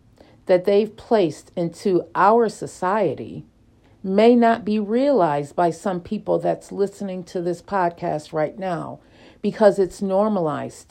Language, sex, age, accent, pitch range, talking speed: English, female, 50-69, American, 165-225 Hz, 125 wpm